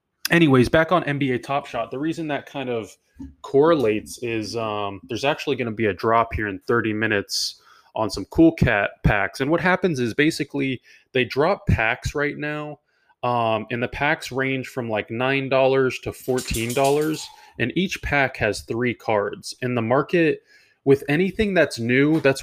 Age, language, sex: 20-39, English, male